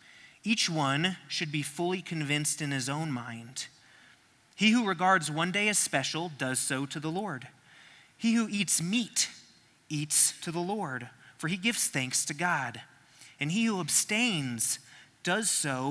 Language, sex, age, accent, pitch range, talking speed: English, male, 20-39, American, 140-205 Hz, 160 wpm